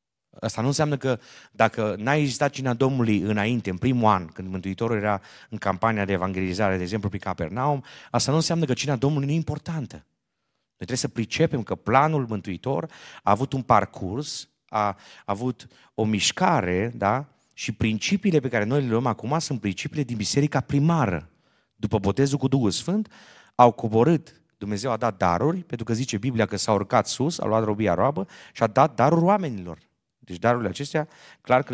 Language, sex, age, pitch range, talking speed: Romanian, male, 30-49, 100-135 Hz, 180 wpm